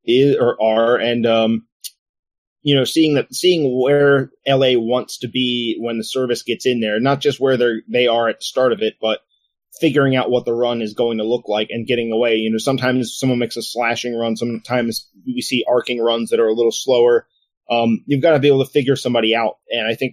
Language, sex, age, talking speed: English, male, 30-49, 230 wpm